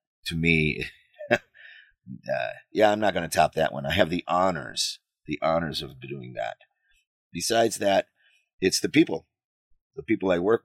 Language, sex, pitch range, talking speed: English, male, 85-105 Hz, 165 wpm